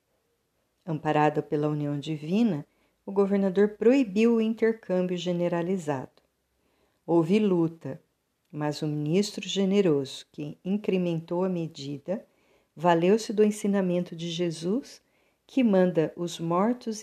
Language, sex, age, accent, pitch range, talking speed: Portuguese, female, 50-69, Brazilian, 155-200 Hz, 100 wpm